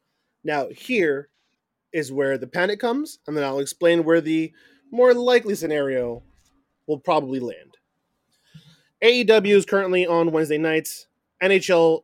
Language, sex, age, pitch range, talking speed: English, male, 20-39, 140-170 Hz, 130 wpm